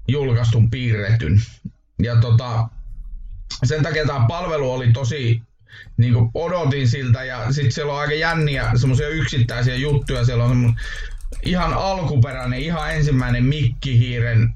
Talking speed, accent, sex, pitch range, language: 110 wpm, native, male, 115-130 Hz, Finnish